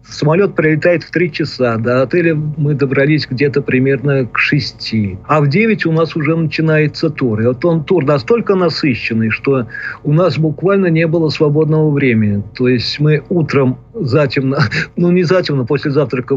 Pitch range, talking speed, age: 130-160 Hz, 165 wpm, 40-59